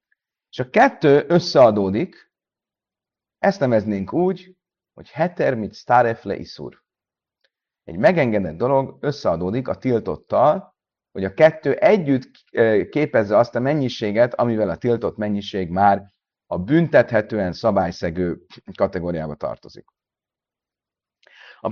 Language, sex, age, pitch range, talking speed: Hungarian, male, 30-49, 105-150 Hz, 100 wpm